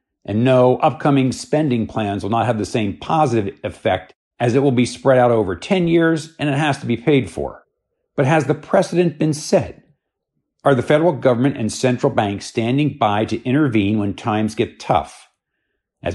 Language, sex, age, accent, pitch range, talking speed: English, male, 50-69, American, 110-140 Hz, 185 wpm